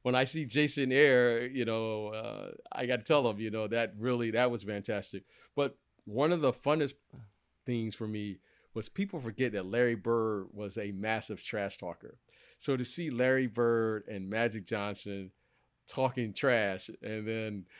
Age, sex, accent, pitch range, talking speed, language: 40-59, male, American, 105-130 Hz, 170 wpm, English